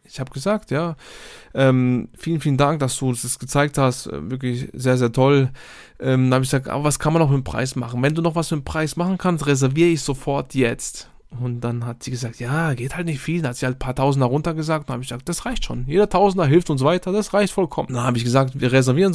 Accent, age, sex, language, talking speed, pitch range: German, 20-39, male, German, 260 wpm, 130-150 Hz